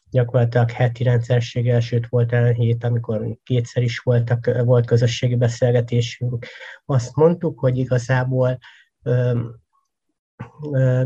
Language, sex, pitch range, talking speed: Hungarian, male, 120-130 Hz, 110 wpm